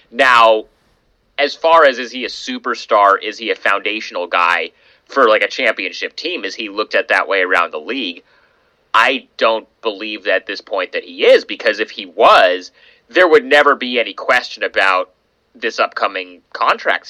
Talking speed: 180 wpm